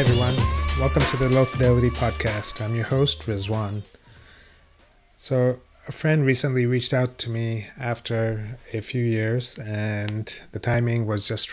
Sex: male